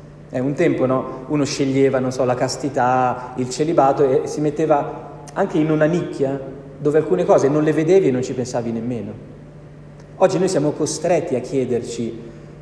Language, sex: Italian, male